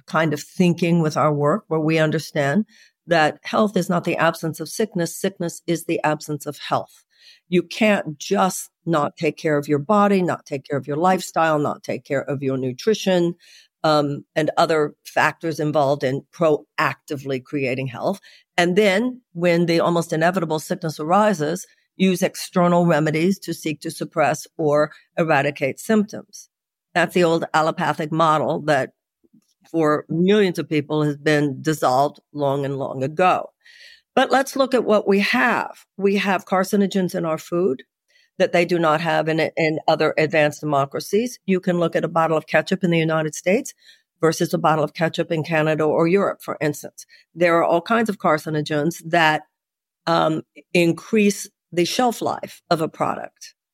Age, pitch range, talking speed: 60-79, 155-185 Hz, 165 wpm